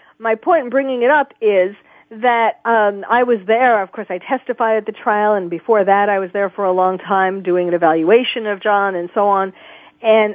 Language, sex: English, female